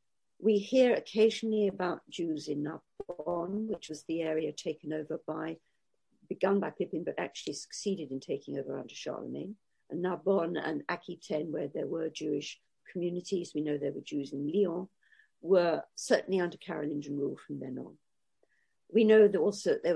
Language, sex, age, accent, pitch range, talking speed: English, female, 50-69, British, 160-220 Hz, 160 wpm